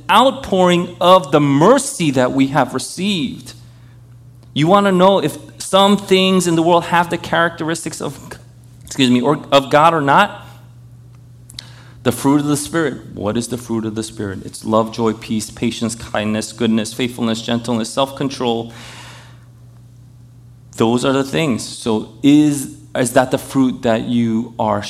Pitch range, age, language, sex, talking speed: 120-135 Hz, 30-49, English, male, 155 wpm